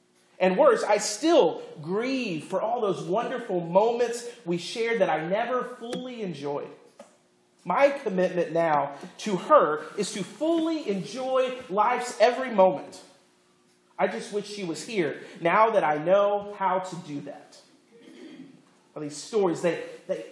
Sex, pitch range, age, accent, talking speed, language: male, 175-250 Hz, 40-59, American, 140 wpm, English